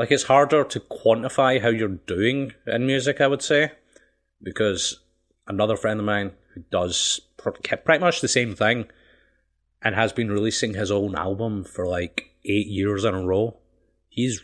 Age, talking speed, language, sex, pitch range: 30-49, 165 wpm, English, male, 100-125 Hz